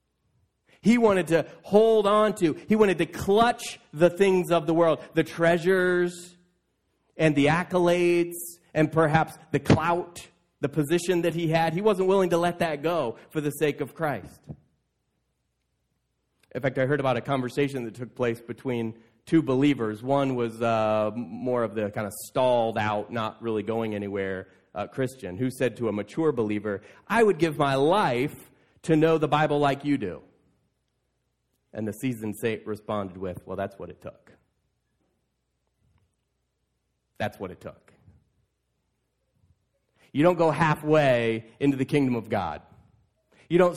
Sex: male